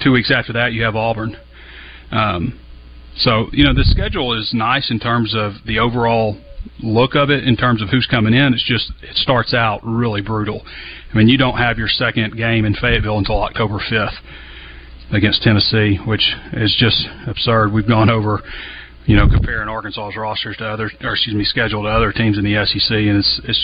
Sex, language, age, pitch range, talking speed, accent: male, English, 40-59, 105-125 Hz, 200 wpm, American